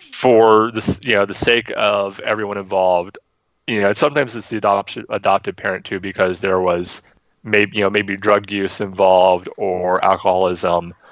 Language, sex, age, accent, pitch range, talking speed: English, male, 30-49, American, 95-115 Hz, 165 wpm